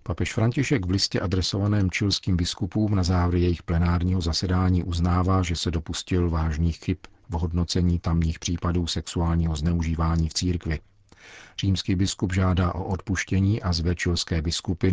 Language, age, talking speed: Czech, 50-69, 140 wpm